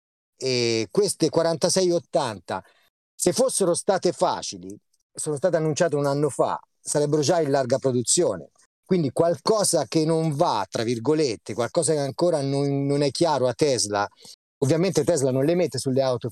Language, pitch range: Italian, 130-170 Hz